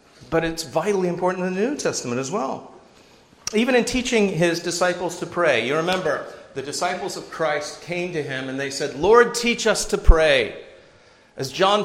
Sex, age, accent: male, 50-69, American